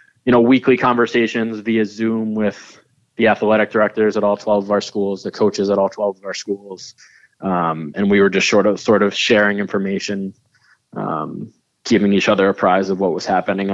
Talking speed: 195 wpm